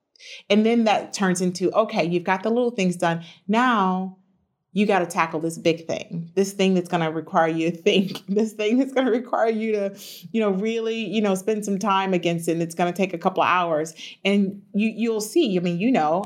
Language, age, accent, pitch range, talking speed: English, 40-59, American, 175-215 Hz, 225 wpm